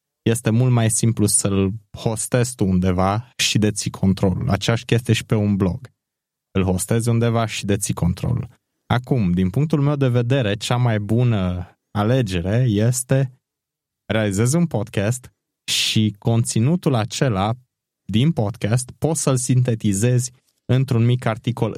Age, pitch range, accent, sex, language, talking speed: 20-39, 100-130 Hz, native, male, Romanian, 130 wpm